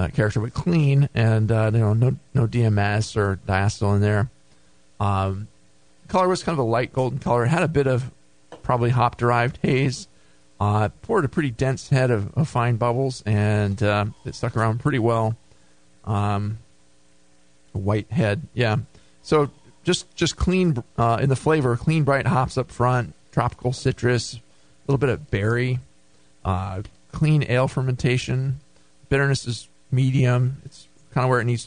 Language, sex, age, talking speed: English, male, 40-59, 165 wpm